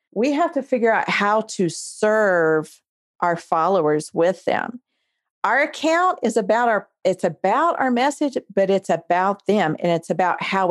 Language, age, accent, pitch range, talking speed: English, 40-59, American, 175-230 Hz, 165 wpm